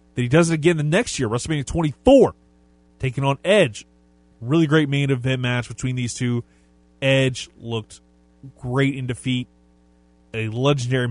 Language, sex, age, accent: English, male, 30-49, American